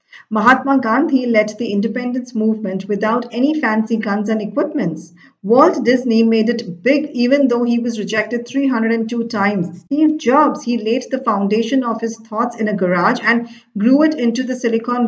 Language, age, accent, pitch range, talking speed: English, 50-69, Indian, 205-250 Hz, 165 wpm